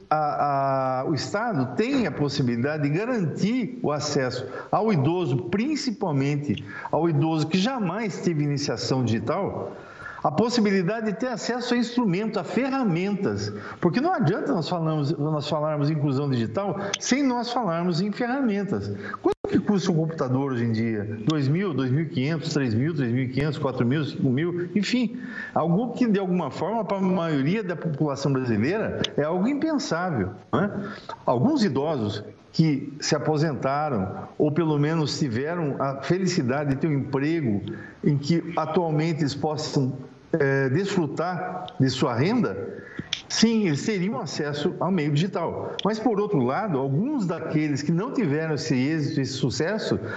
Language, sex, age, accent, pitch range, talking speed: Portuguese, male, 50-69, Brazilian, 140-200 Hz, 145 wpm